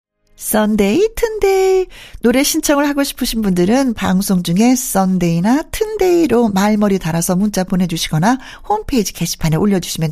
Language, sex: Korean, female